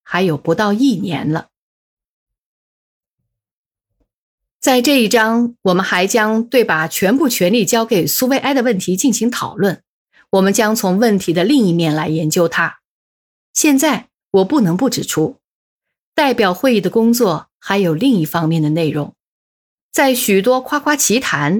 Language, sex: Chinese, female